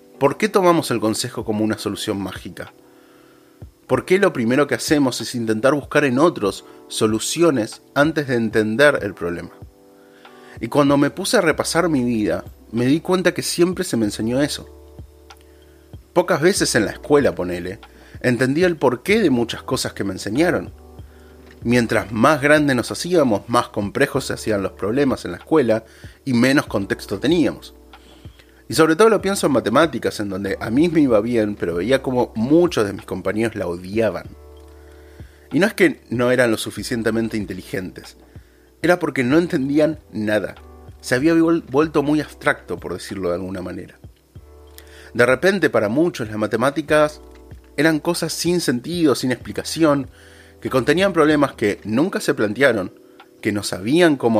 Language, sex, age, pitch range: Spanish, male, 30-49, 100-150 Hz